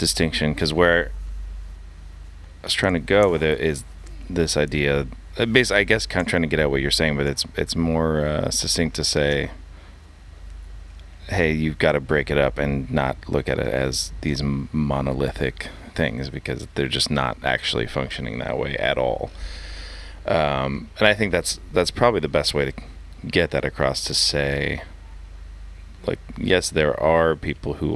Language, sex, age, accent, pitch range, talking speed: English, male, 30-49, American, 70-80 Hz, 175 wpm